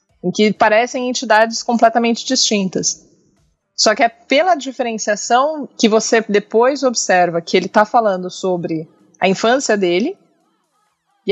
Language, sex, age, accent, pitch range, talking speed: Portuguese, female, 20-39, Brazilian, 185-240 Hz, 120 wpm